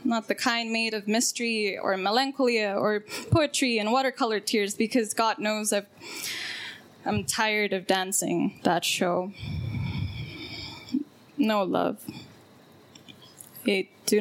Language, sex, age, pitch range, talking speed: English, female, 10-29, 205-260 Hz, 110 wpm